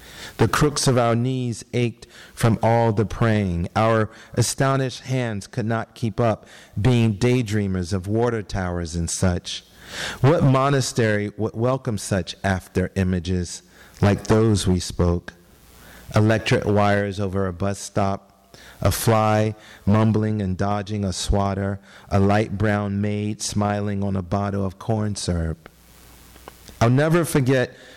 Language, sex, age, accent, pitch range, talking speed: English, male, 40-59, American, 90-110 Hz, 130 wpm